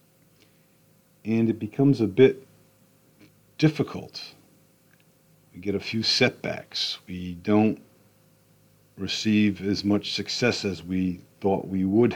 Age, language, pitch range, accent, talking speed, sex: 50-69, English, 95-120 Hz, American, 110 wpm, male